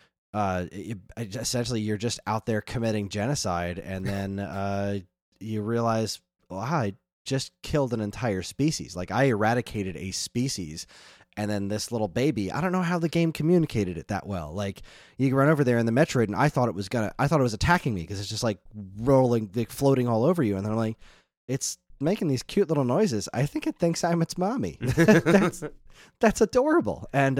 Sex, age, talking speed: male, 20-39, 205 wpm